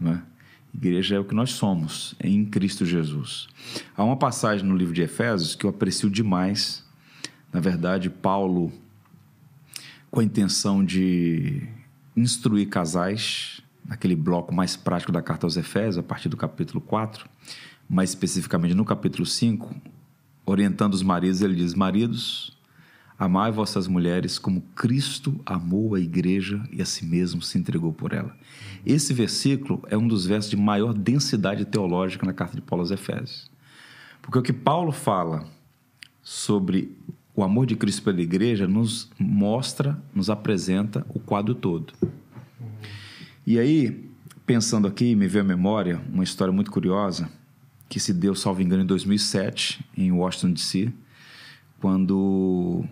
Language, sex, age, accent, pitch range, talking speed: Portuguese, male, 40-59, Brazilian, 95-120 Hz, 145 wpm